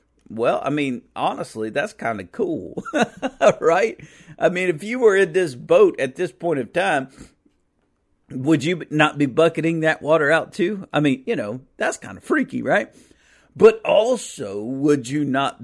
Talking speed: 175 wpm